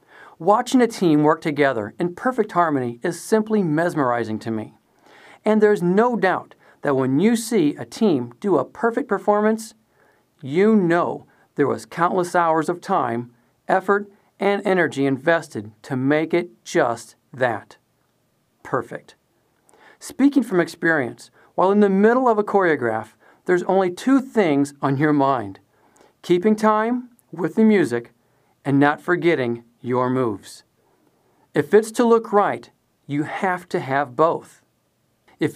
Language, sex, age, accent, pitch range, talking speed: English, male, 50-69, American, 135-205 Hz, 140 wpm